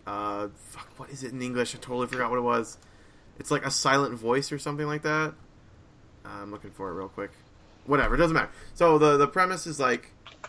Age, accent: 20-39, American